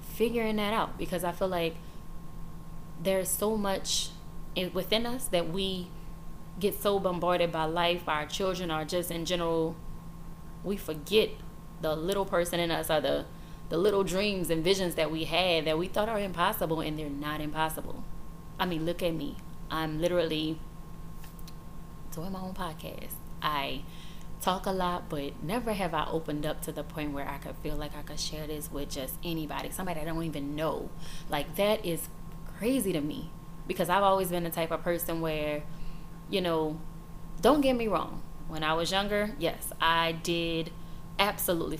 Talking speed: 175 wpm